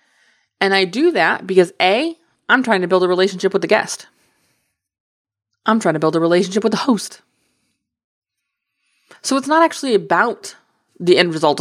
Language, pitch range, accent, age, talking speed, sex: English, 160-215 Hz, American, 20-39, 165 wpm, female